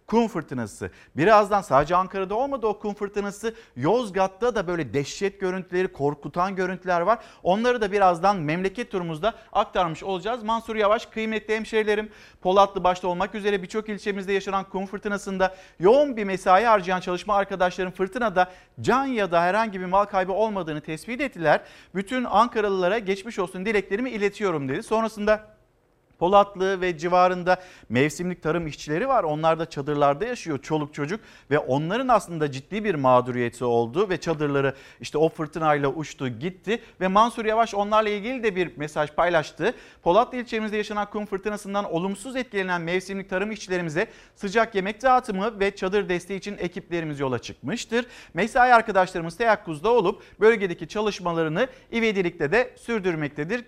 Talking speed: 140 wpm